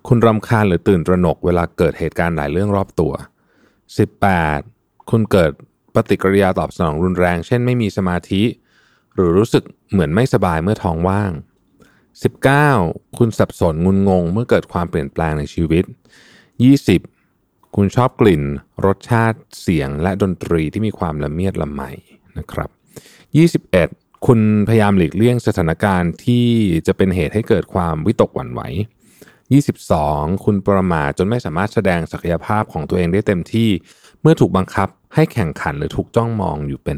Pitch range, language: 85-115 Hz, Thai